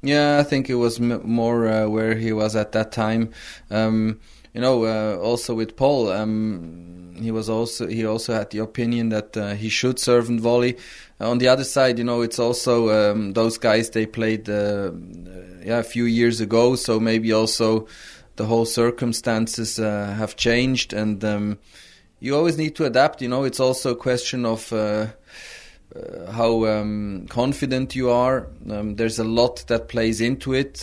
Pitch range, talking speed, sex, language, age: 110-120 Hz, 185 wpm, male, English, 20-39